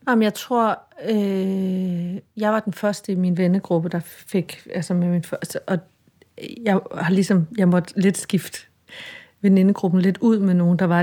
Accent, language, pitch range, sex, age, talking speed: native, Danish, 175-215 Hz, female, 30-49, 180 wpm